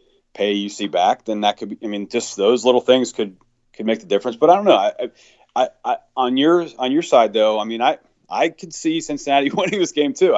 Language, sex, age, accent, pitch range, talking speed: English, male, 30-49, American, 105-155 Hz, 250 wpm